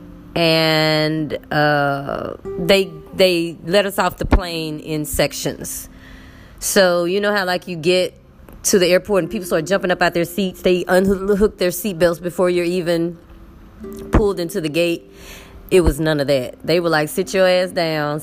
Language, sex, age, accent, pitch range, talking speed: English, female, 20-39, American, 145-185 Hz, 175 wpm